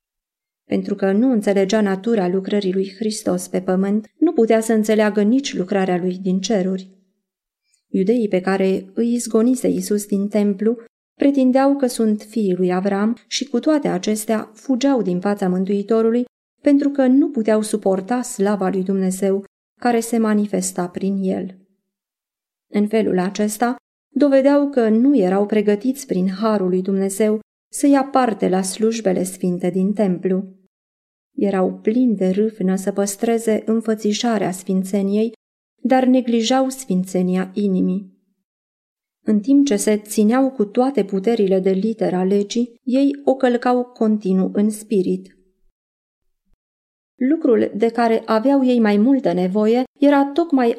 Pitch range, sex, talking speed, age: 190-235 Hz, female, 135 wpm, 30-49